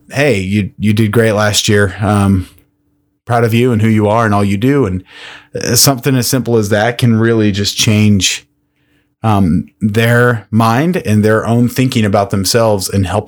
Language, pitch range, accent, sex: English, 105-125 Hz, American, male